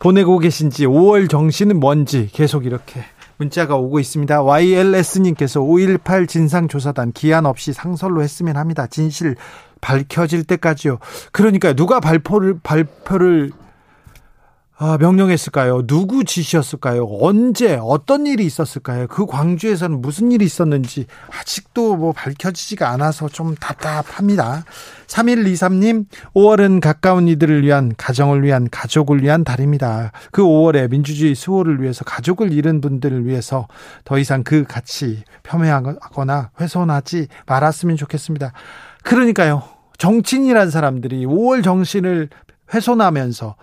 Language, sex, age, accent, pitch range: Korean, male, 40-59, native, 140-185 Hz